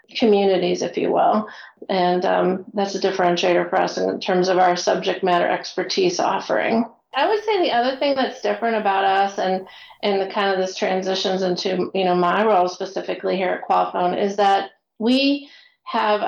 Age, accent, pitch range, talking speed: 40-59, American, 185-210 Hz, 180 wpm